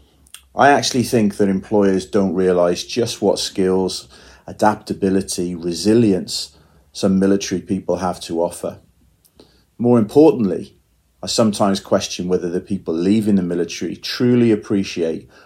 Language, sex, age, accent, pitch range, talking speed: English, male, 30-49, British, 85-105 Hz, 120 wpm